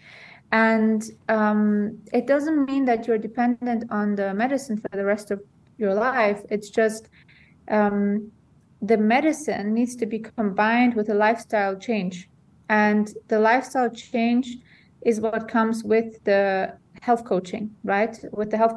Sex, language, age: female, English, 20-39